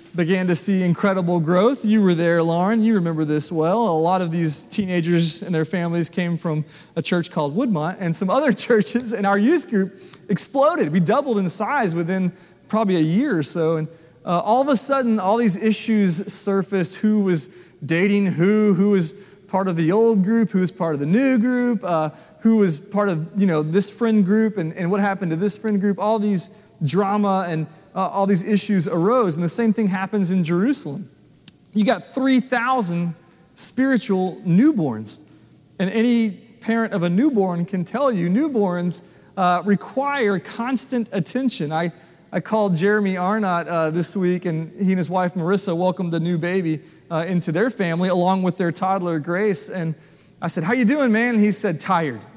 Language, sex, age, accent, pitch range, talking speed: English, male, 30-49, American, 170-210 Hz, 190 wpm